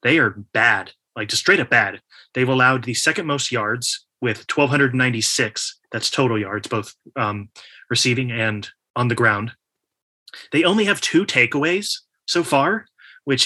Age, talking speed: 30-49, 150 wpm